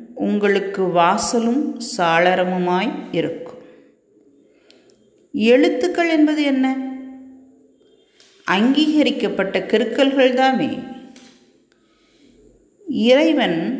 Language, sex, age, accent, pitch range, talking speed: Tamil, female, 40-59, native, 205-280 Hz, 50 wpm